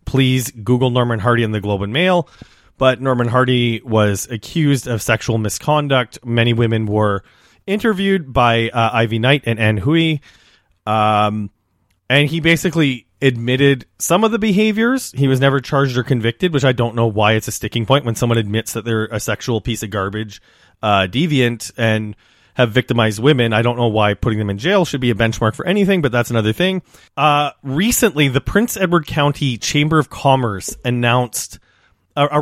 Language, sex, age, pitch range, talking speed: English, male, 30-49, 110-140 Hz, 180 wpm